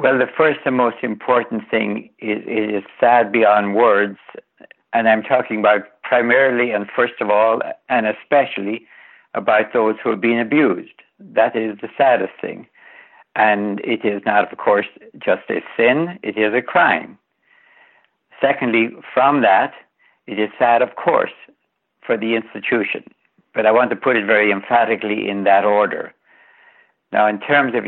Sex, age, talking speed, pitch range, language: male, 60-79, 160 wpm, 100-125 Hz, English